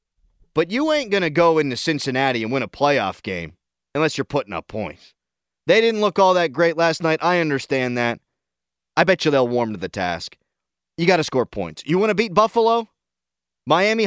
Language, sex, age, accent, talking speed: English, male, 30-49, American, 205 wpm